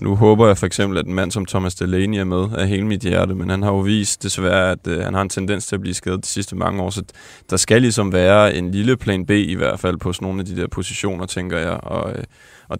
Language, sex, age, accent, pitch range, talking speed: Danish, male, 20-39, native, 90-105 Hz, 270 wpm